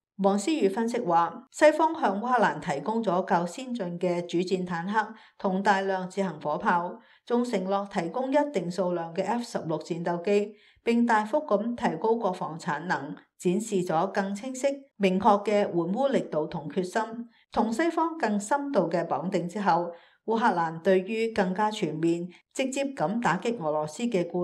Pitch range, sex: 175-225 Hz, female